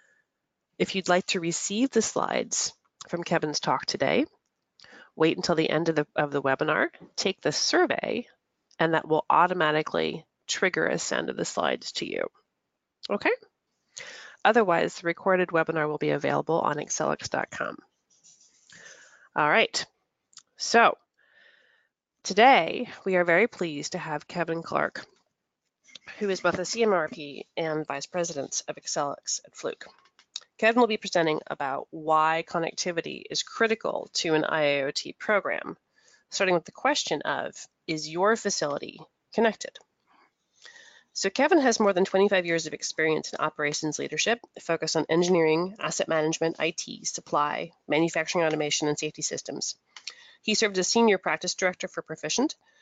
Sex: female